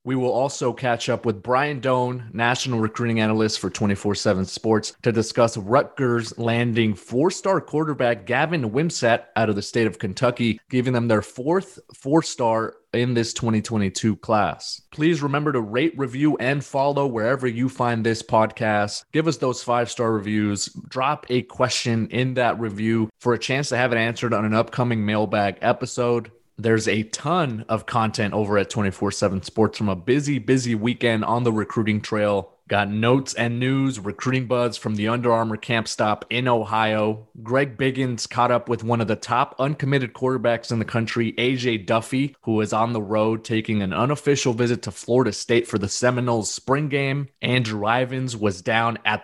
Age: 30-49